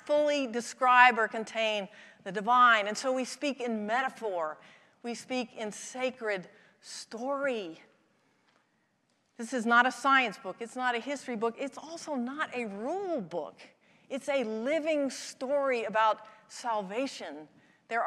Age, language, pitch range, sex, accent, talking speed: 40-59, English, 210-265 Hz, female, American, 135 wpm